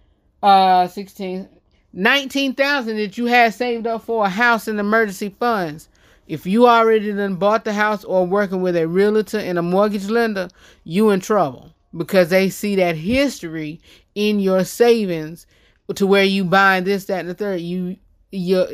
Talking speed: 170 wpm